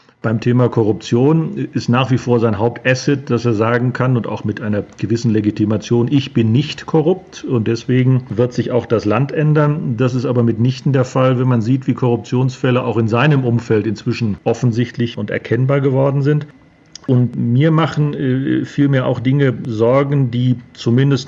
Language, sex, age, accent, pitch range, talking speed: German, male, 40-59, German, 115-140 Hz, 170 wpm